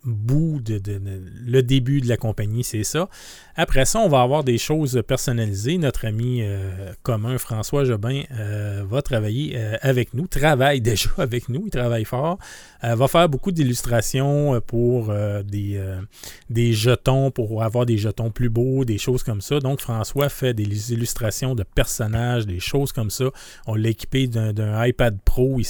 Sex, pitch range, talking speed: male, 110-140 Hz, 180 wpm